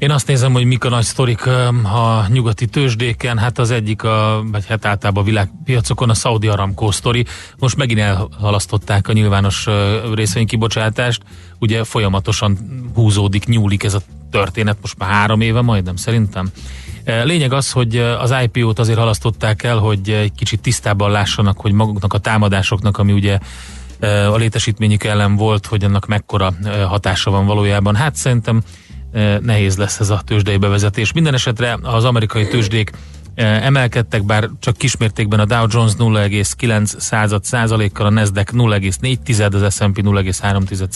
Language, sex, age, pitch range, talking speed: Hungarian, male, 30-49, 100-115 Hz, 150 wpm